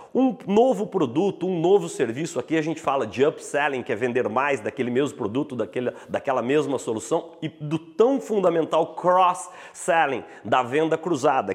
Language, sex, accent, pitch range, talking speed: Portuguese, male, Brazilian, 155-205 Hz, 165 wpm